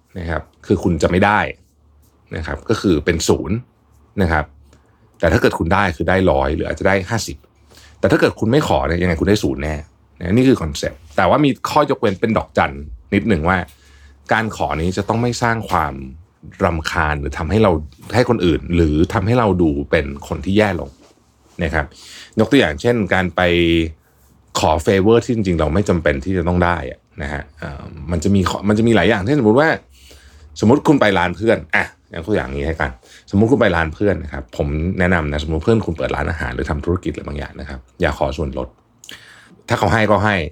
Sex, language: male, Thai